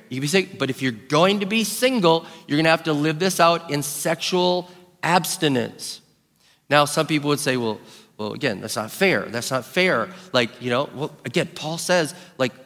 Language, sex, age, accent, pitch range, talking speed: English, male, 40-59, American, 145-185 Hz, 210 wpm